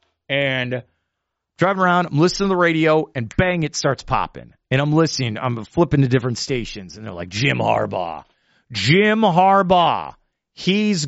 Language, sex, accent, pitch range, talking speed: English, male, American, 130-190 Hz, 155 wpm